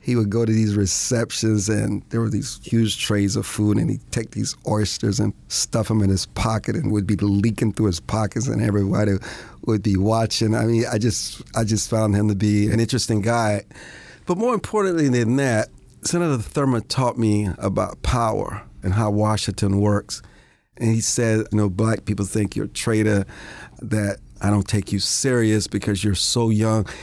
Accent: American